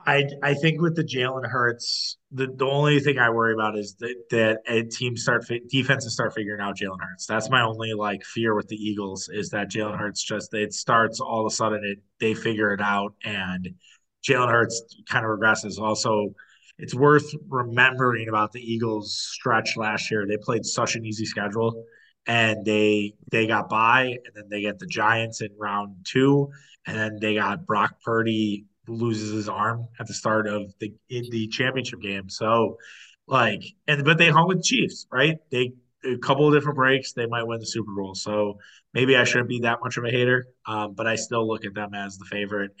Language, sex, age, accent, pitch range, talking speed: English, male, 20-39, American, 105-120 Hz, 205 wpm